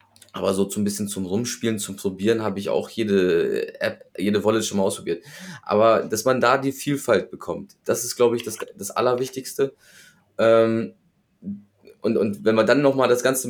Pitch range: 105-130 Hz